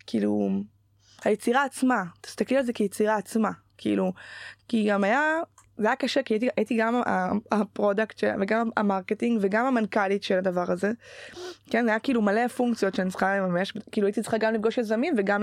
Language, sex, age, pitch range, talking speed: Hebrew, female, 20-39, 200-235 Hz, 165 wpm